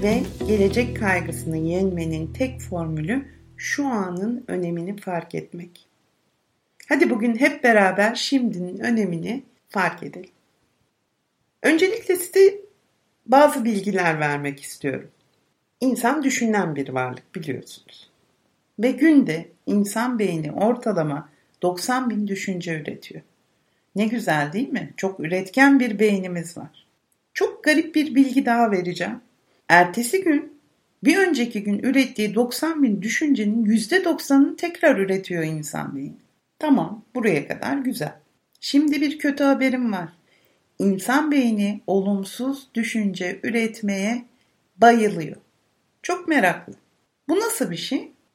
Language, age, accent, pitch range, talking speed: Turkish, 60-79, native, 190-280 Hz, 110 wpm